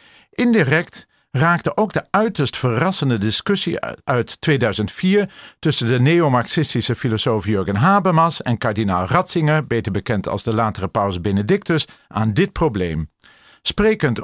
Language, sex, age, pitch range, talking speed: Dutch, male, 50-69, 115-170 Hz, 120 wpm